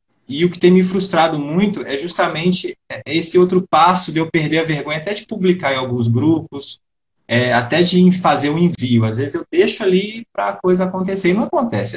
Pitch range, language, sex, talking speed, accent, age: 115-170 Hz, Portuguese, male, 210 wpm, Brazilian, 20-39